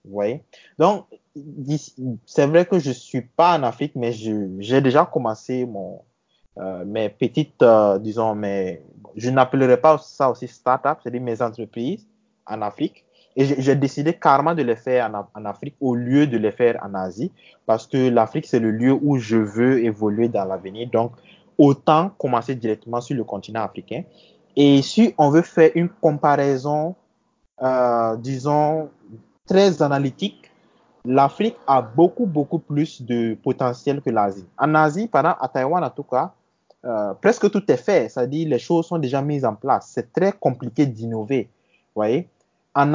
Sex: male